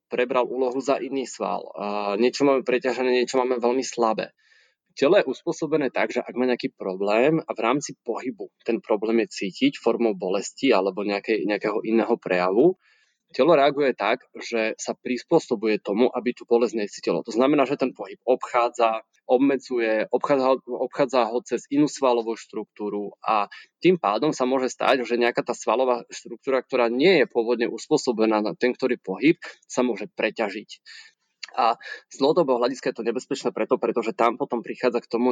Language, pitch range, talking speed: Slovak, 115-130 Hz, 165 wpm